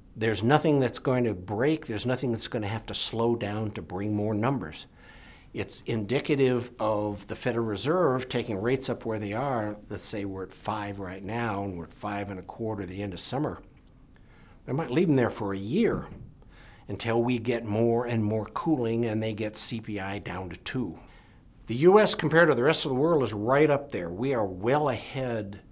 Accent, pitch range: American, 100-125 Hz